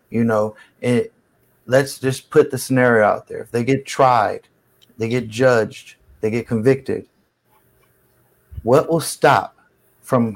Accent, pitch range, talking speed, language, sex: American, 115-135 Hz, 135 wpm, English, male